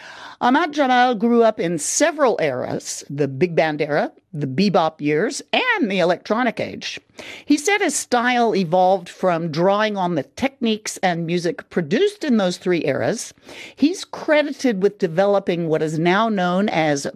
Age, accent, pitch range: 50-69, American, 170-250 Hz